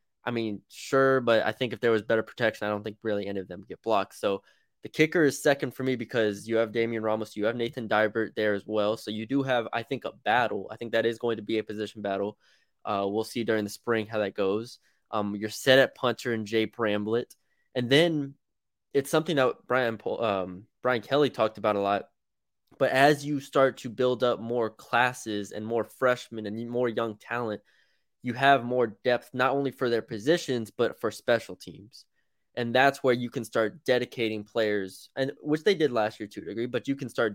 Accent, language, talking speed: American, English, 220 wpm